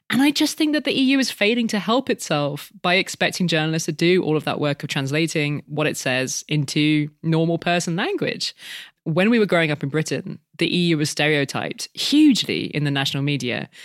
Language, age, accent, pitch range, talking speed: English, 20-39, British, 150-210 Hz, 200 wpm